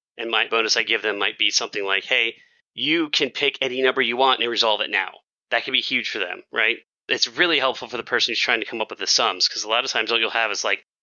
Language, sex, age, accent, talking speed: English, male, 30-49, American, 290 wpm